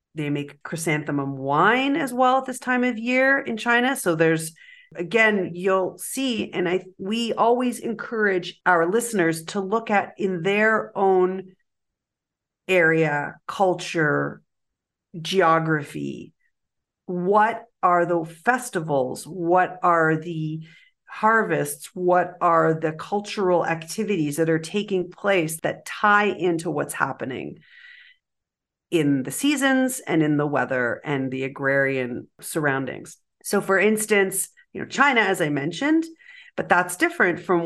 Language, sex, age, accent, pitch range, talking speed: English, female, 50-69, American, 160-215 Hz, 125 wpm